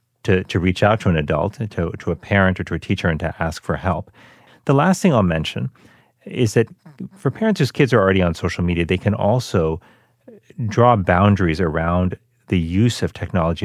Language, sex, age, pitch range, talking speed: English, male, 40-59, 90-115 Hz, 200 wpm